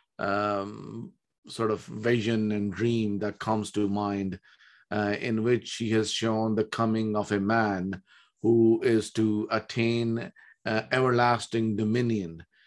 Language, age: Bengali, 50-69